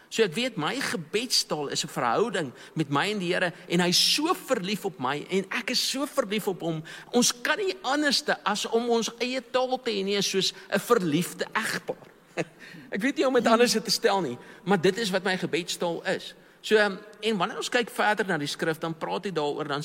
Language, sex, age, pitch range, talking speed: English, male, 50-69, 155-215 Hz, 220 wpm